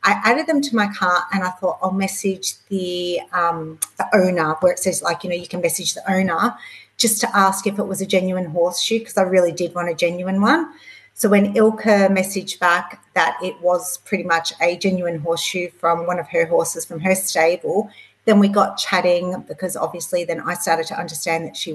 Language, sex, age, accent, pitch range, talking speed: English, female, 40-59, Australian, 175-210 Hz, 210 wpm